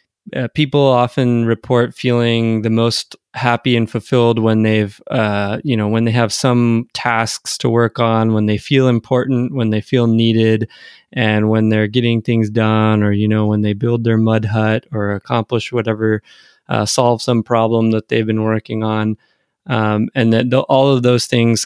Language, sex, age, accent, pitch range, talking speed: English, male, 20-39, American, 110-125 Hz, 180 wpm